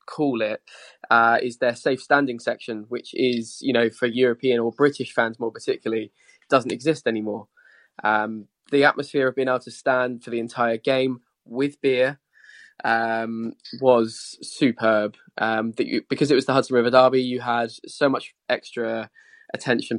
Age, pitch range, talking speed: 20-39, 115-130 Hz, 160 wpm